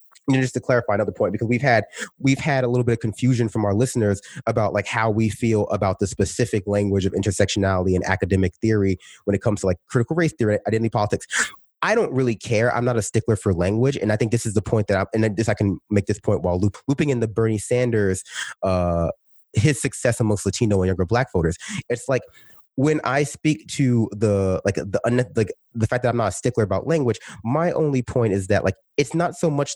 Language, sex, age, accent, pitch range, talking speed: English, male, 30-49, American, 105-135 Hz, 230 wpm